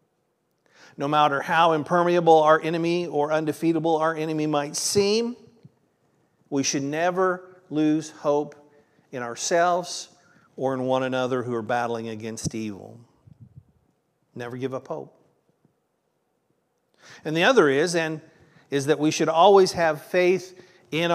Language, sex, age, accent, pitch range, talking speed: English, male, 50-69, American, 145-180 Hz, 130 wpm